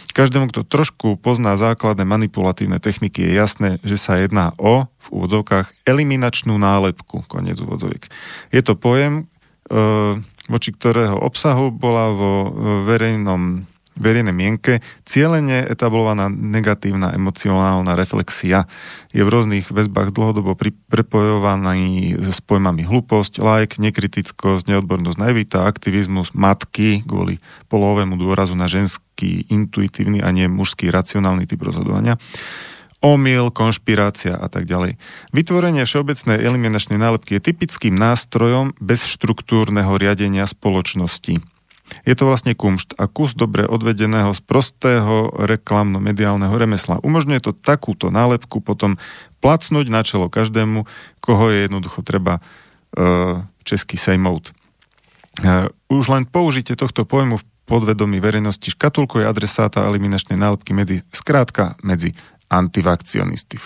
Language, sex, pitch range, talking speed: Slovak, male, 95-120 Hz, 120 wpm